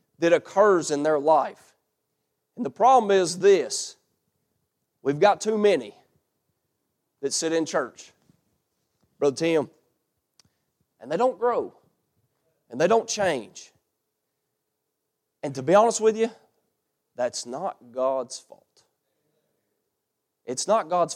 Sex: male